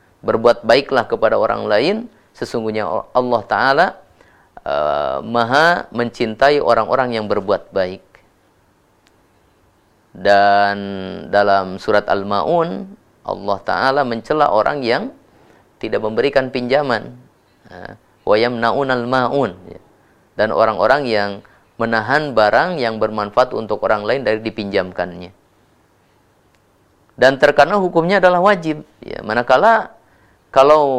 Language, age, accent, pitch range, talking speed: Indonesian, 30-49, native, 105-145 Hz, 90 wpm